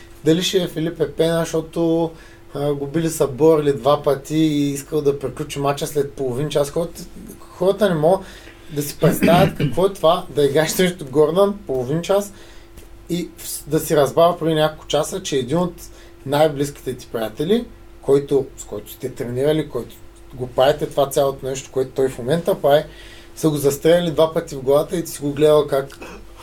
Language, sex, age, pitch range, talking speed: Bulgarian, male, 30-49, 140-175 Hz, 180 wpm